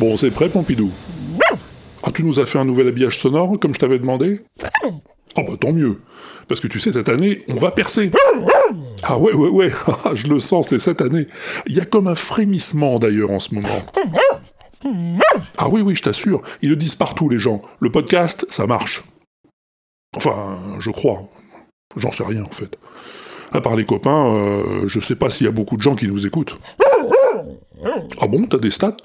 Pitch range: 115-175 Hz